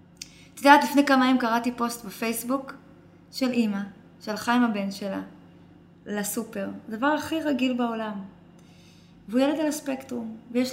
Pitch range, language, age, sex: 205-275 Hz, Hebrew, 20-39, female